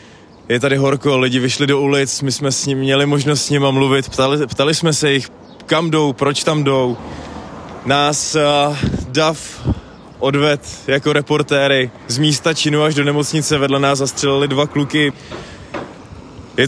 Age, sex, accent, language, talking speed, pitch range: 20-39, male, native, Czech, 160 wpm, 125-145 Hz